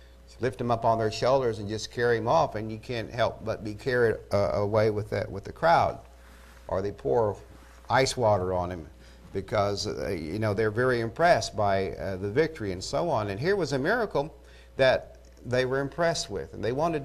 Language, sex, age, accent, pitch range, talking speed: English, male, 50-69, American, 95-135 Hz, 210 wpm